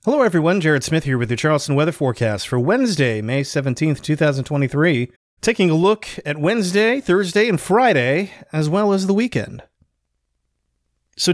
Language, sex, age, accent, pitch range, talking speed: English, male, 30-49, American, 115-150 Hz, 155 wpm